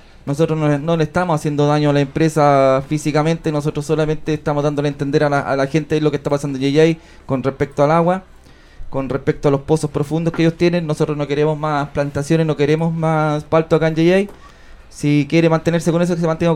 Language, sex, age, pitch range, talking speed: Spanish, male, 20-39, 140-160 Hz, 220 wpm